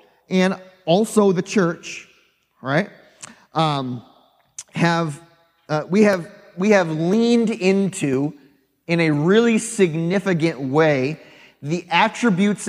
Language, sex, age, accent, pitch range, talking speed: English, male, 30-49, American, 155-195 Hz, 100 wpm